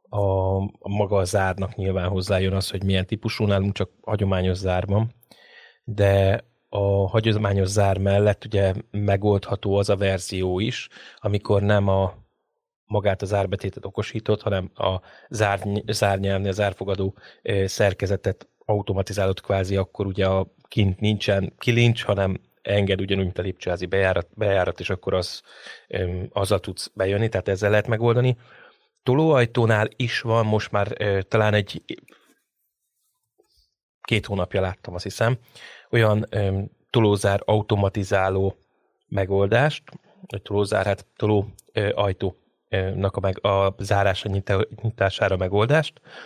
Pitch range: 95-110 Hz